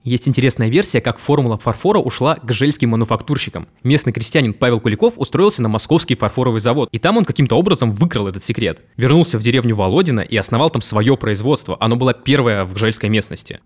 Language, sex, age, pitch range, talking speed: Russian, male, 20-39, 115-145 Hz, 185 wpm